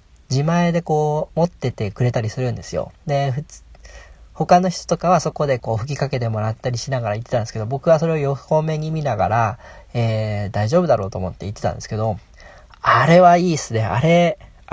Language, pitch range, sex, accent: Japanese, 110-160 Hz, male, native